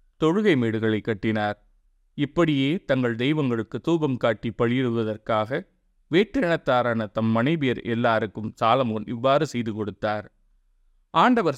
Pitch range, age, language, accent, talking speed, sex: 110-140 Hz, 30-49, Tamil, native, 85 wpm, male